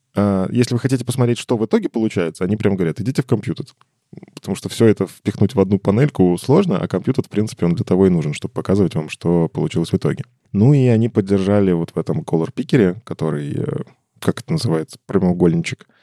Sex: male